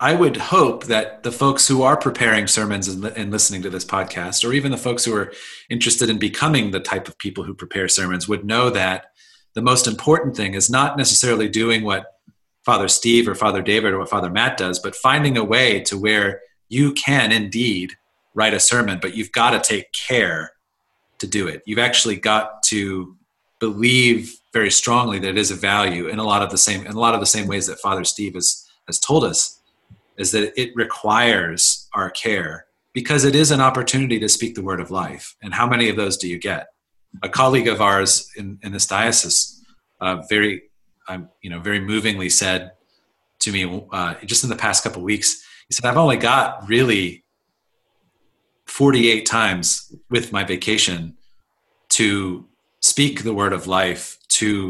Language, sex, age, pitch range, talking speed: English, male, 40-59, 95-120 Hz, 190 wpm